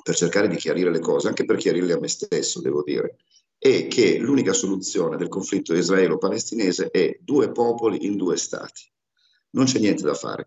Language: Italian